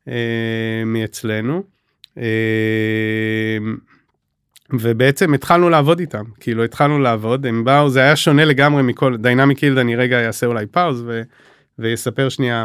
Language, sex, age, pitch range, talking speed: English, male, 30-49, 115-150 Hz, 140 wpm